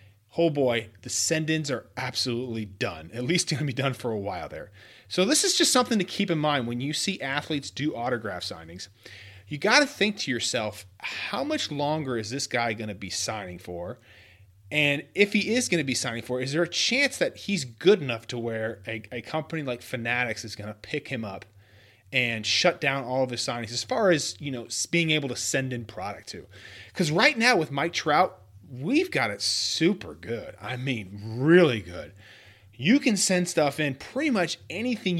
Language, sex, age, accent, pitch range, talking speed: English, male, 30-49, American, 115-170 Hz, 210 wpm